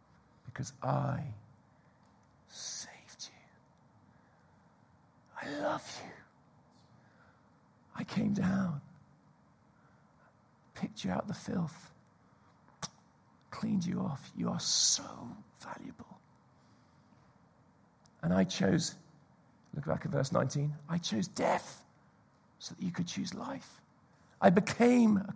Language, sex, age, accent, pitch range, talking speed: English, male, 50-69, British, 145-190 Hz, 100 wpm